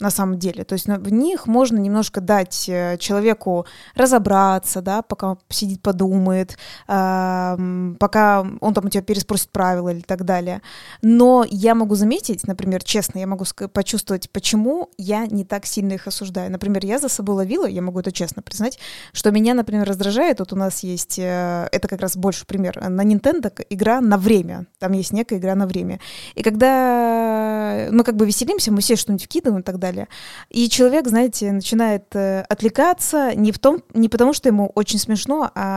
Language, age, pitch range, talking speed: Russian, 20-39, 190-230 Hz, 175 wpm